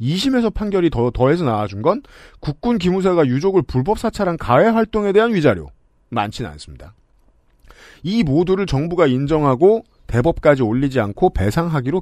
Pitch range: 120-195 Hz